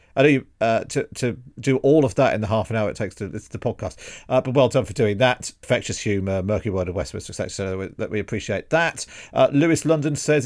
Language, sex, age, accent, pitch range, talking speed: English, male, 50-69, British, 100-130 Hz, 245 wpm